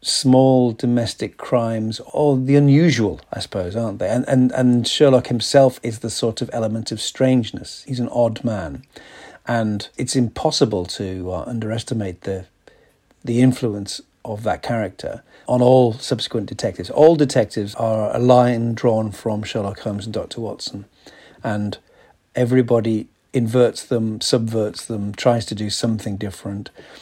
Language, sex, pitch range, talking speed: English, male, 110-130 Hz, 145 wpm